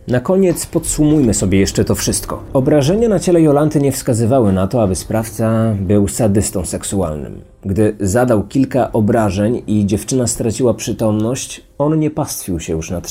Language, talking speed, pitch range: Polish, 155 wpm, 100-130 Hz